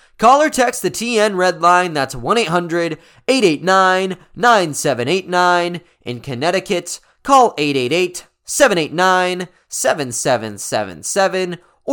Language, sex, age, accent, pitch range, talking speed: English, male, 20-39, American, 155-200 Hz, 65 wpm